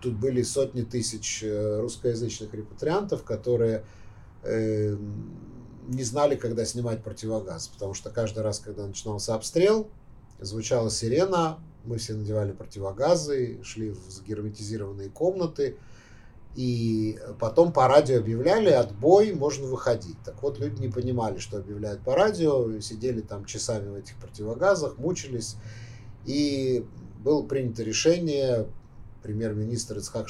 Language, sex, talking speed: Russian, male, 115 wpm